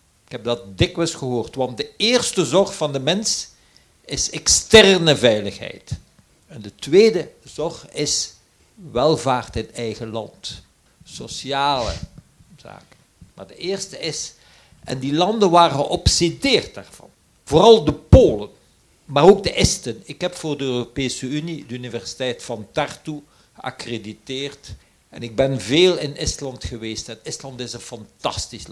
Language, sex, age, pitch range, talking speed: Dutch, male, 50-69, 120-175 Hz, 140 wpm